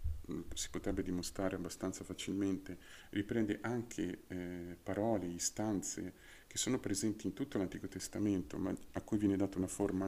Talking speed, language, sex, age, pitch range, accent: 145 wpm, Italian, male, 40-59, 95-105 Hz, native